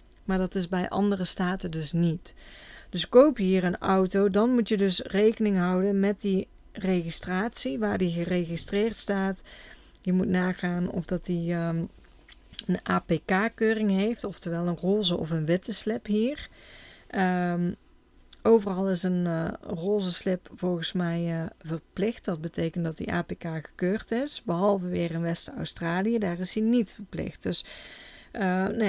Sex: female